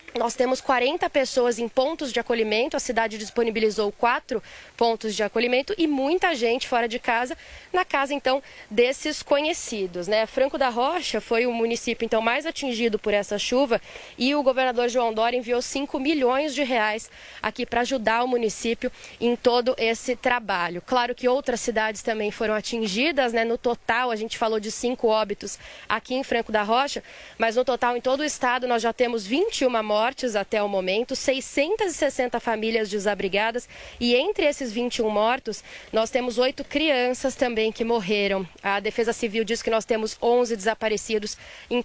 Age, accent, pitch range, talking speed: 20-39, Brazilian, 225-255 Hz, 170 wpm